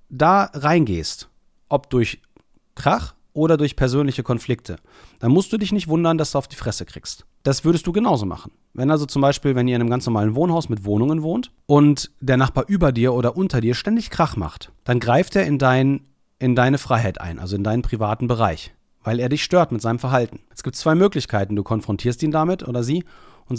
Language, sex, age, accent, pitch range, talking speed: German, male, 40-59, German, 115-150 Hz, 210 wpm